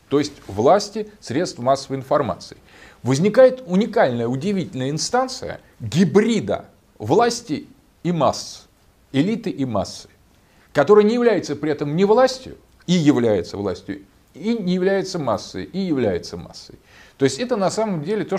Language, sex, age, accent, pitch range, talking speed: Russian, male, 40-59, native, 125-195 Hz, 135 wpm